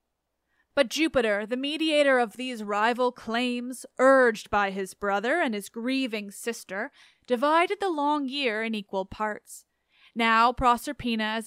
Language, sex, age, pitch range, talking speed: English, female, 30-49, 205-265 Hz, 135 wpm